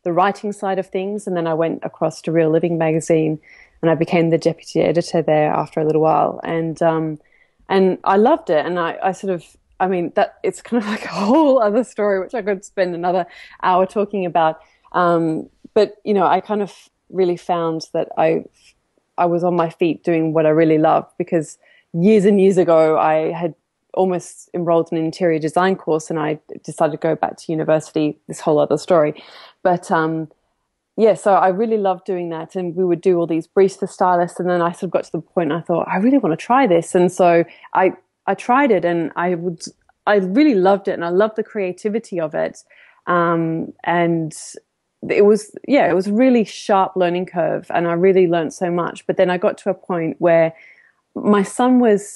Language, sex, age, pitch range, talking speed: English, female, 20-39, 165-195 Hz, 215 wpm